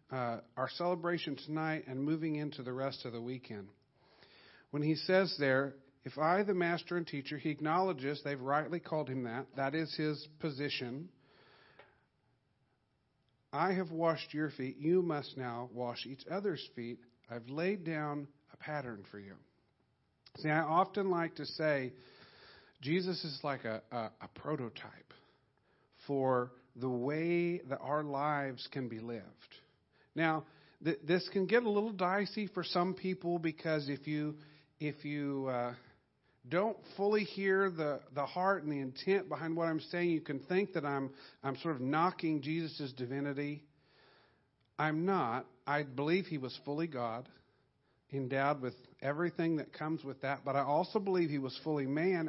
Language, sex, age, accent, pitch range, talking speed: English, male, 50-69, American, 130-170 Hz, 160 wpm